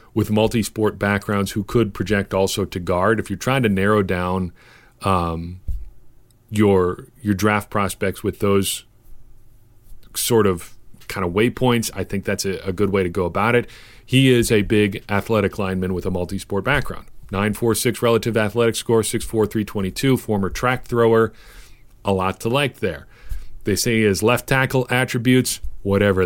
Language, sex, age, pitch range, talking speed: English, male, 40-59, 95-115 Hz, 170 wpm